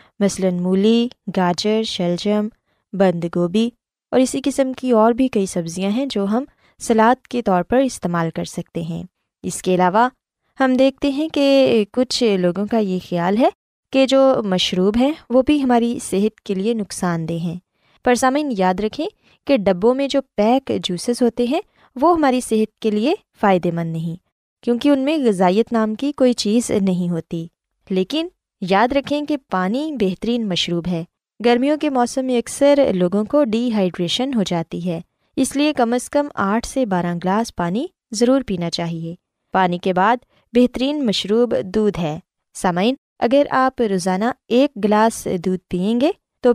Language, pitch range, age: Urdu, 185-260 Hz, 20-39